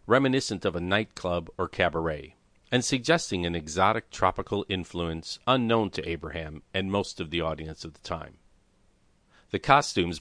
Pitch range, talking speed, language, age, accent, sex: 85-100 Hz, 145 wpm, English, 50-69, American, male